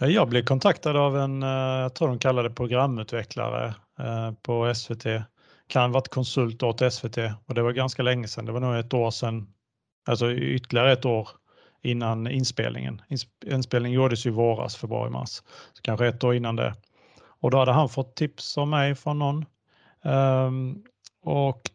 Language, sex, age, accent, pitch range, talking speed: Swedish, male, 30-49, Norwegian, 115-135 Hz, 170 wpm